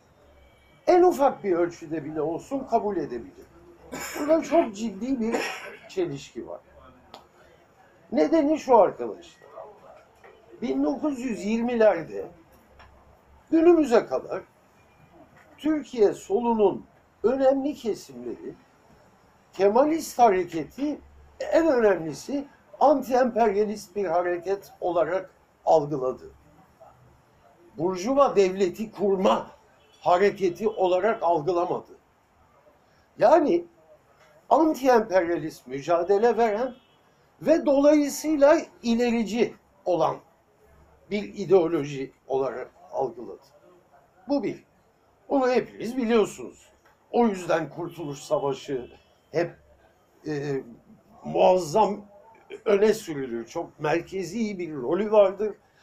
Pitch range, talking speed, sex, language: 175-265 Hz, 75 wpm, male, Turkish